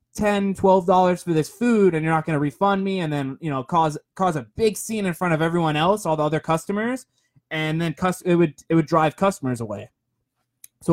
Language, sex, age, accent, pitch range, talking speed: English, male, 20-39, American, 150-190 Hz, 210 wpm